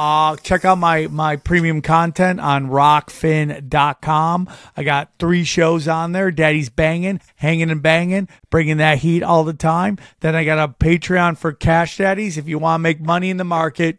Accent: American